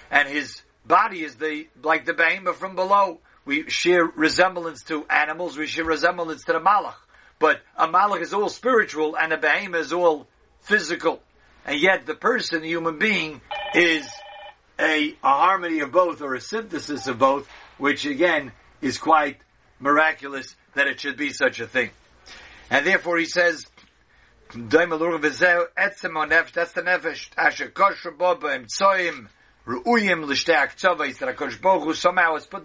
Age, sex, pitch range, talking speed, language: 50-69, male, 155-195 Hz, 130 wpm, English